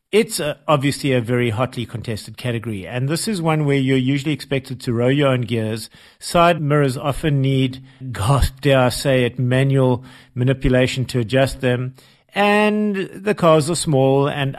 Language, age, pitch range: English, 50-69, 125-150 Hz